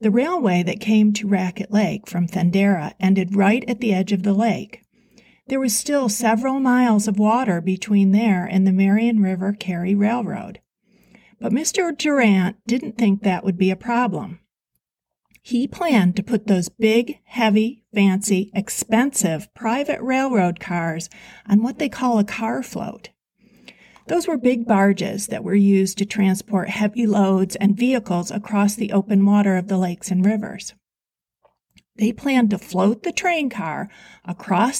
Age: 50-69